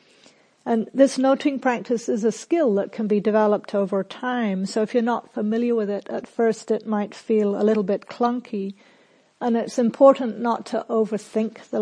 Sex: female